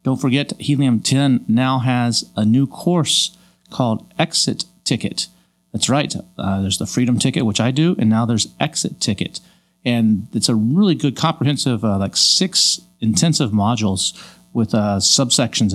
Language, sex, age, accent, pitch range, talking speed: English, male, 40-59, American, 105-130 Hz, 155 wpm